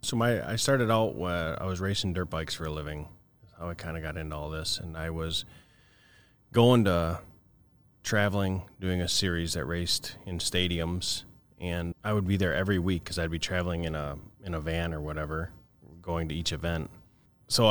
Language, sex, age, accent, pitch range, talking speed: English, male, 30-49, American, 85-105 Hz, 200 wpm